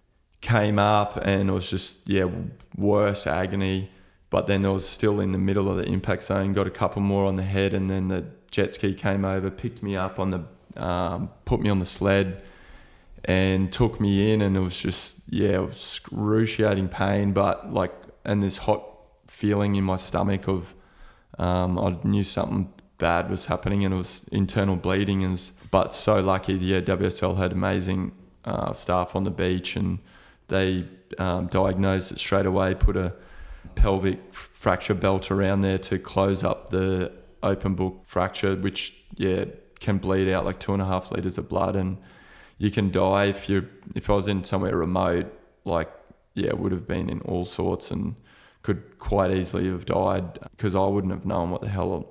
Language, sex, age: English, male, 20-39